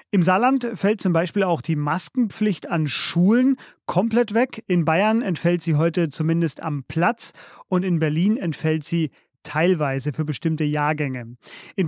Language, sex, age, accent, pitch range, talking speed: German, male, 30-49, German, 160-195 Hz, 150 wpm